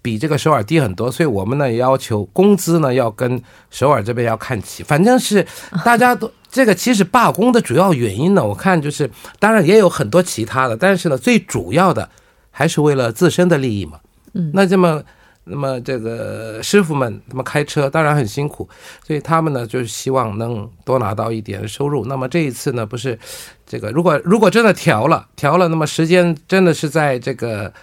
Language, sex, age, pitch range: Korean, male, 50-69, 120-175 Hz